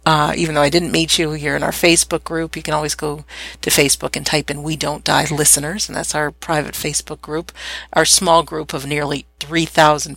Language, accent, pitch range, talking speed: English, American, 145-175 Hz, 220 wpm